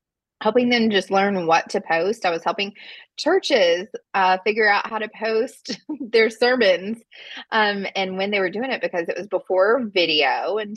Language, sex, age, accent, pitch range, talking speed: English, female, 20-39, American, 175-255 Hz, 180 wpm